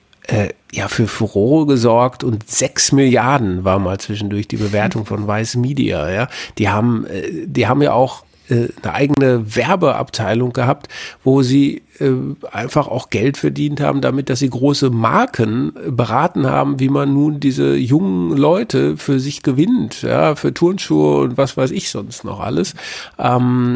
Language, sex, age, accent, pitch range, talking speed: German, male, 50-69, German, 105-140 Hz, 150 wpm